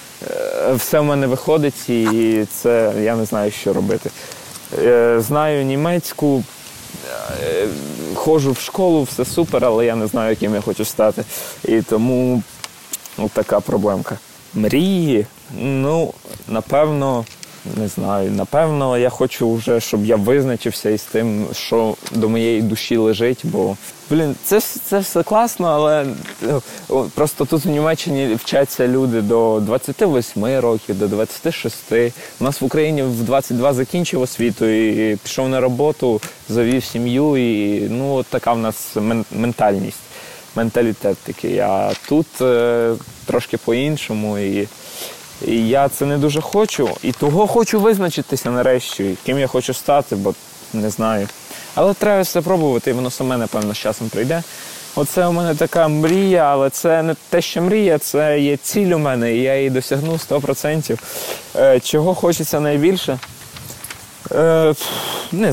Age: 20-39